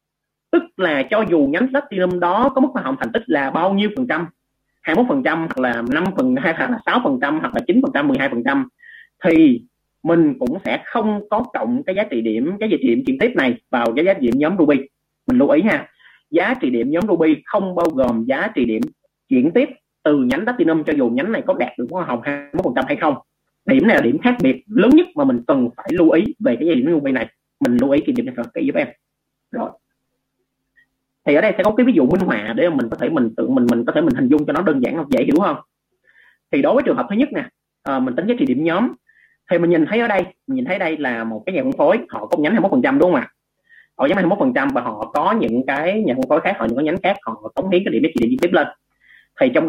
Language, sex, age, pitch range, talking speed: Vietnamese, male, 30-49, 180-285 Hz, 275 wpm